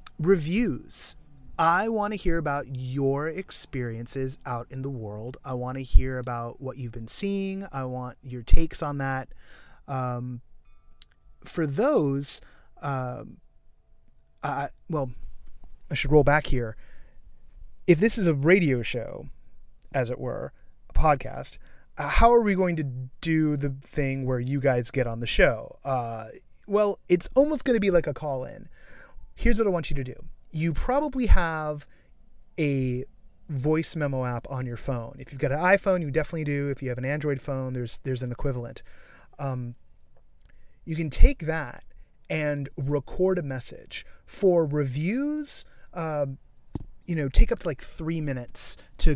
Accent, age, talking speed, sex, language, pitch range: American, 30-49, 160 wpm, male, English, 125-160 Hz